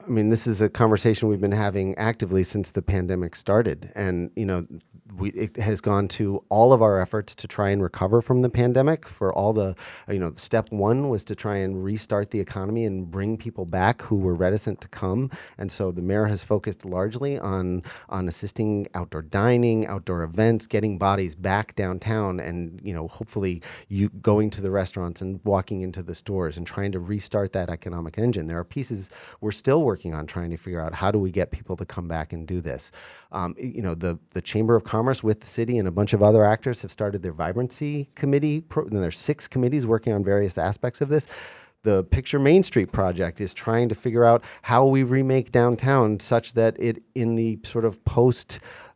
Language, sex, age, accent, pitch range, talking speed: English, male, 40-59, American, 95-115 Hz, 210 wpm